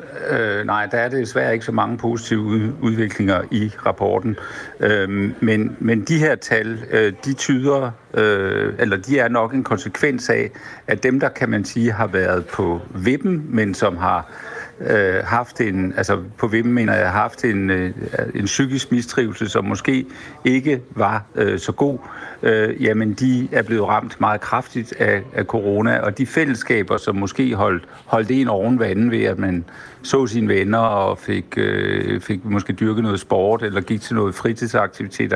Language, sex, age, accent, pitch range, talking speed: Danish, male, 60-79, native, 100-120 Hz, 175 wpm